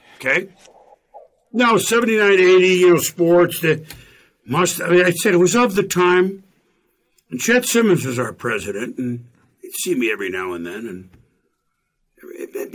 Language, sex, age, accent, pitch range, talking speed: English, male, 60-79, American, 135-225 Hz, 155 wpm